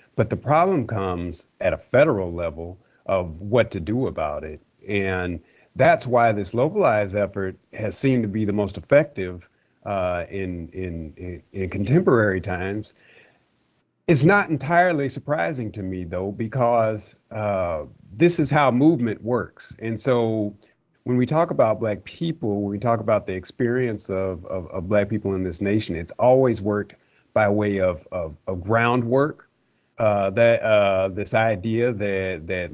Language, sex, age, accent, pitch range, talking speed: English, male, 50-69, American, 95-115 Hz, 160 wpm